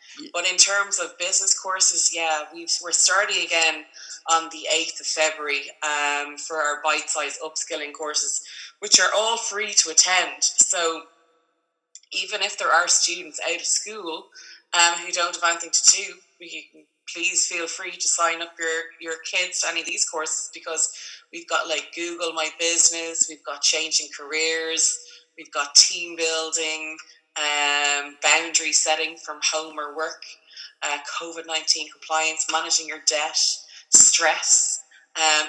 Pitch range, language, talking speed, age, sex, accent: 155-175 Hz, English, 150 wpm, 20-39, female, Irish